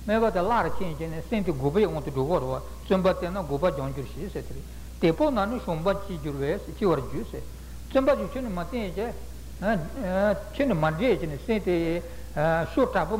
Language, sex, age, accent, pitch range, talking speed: Italian, male, 60-79, Indian, 145-205 Hz, 110 wpm